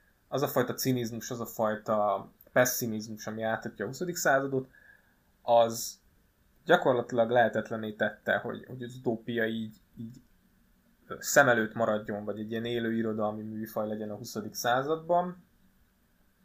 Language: Hungarian